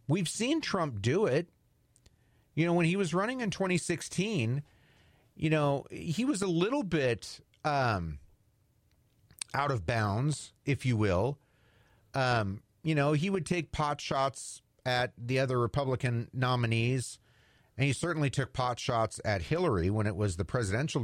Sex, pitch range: male, 110-160 Hz